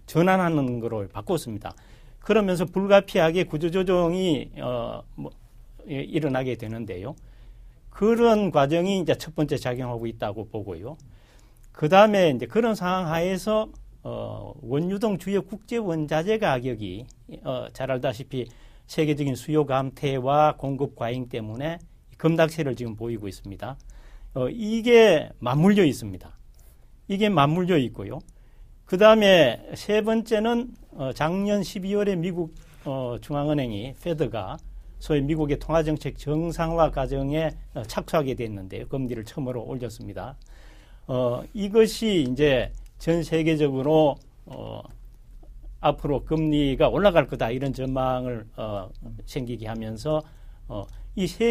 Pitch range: 120-180 Hz